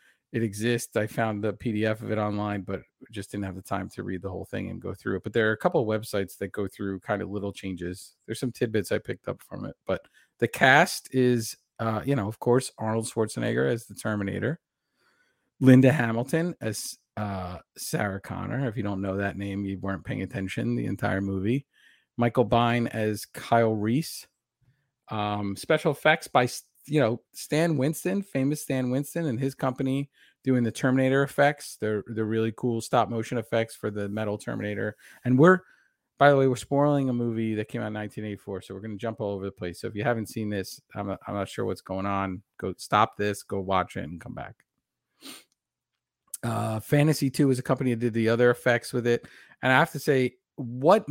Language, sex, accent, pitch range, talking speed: English, male, American, 105-130 Hz, 210 wpm